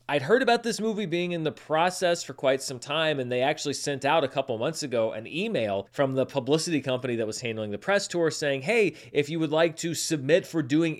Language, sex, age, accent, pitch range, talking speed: English, male, 30-49, American, 130-170 Hz, 240 wpm